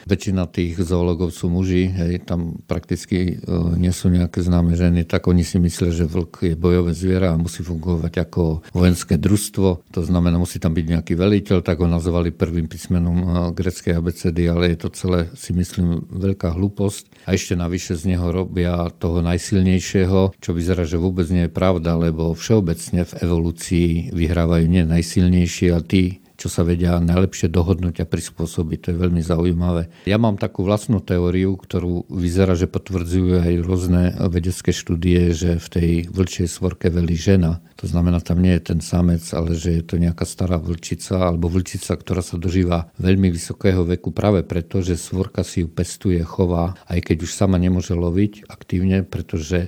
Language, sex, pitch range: Slovak, male, 85-95 Hz